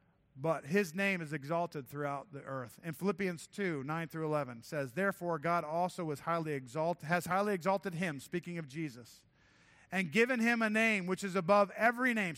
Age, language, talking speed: 50-69, English, 180 wpm